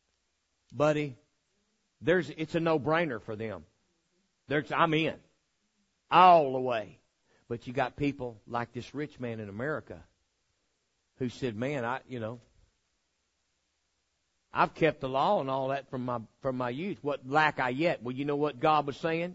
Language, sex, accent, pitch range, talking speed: English, male, American, 110-155 Hz, 165 wpm